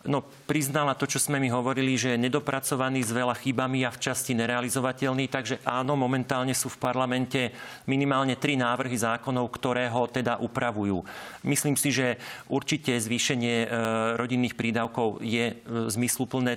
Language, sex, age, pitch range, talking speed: Slovak, male, 40-59, 120-145 Hz, 145 wpm